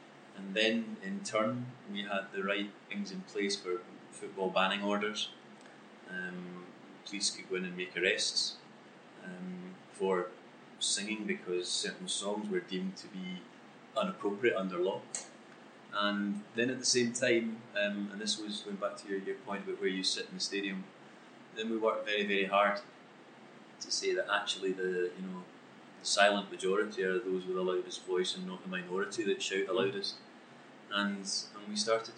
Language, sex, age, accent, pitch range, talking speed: Hebrew, male, 30-49, British, 100-125 Hz, 175 wpm